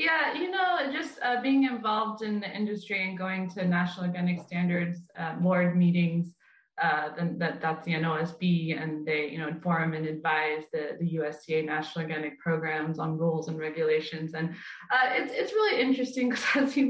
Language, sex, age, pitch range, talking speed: English, female, 20-39, 170-230 Hz, 170 wpm